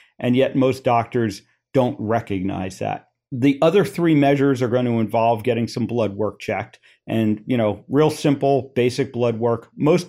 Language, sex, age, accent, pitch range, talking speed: English, male, 50-69, American, 110-135 Hz, 170 wpm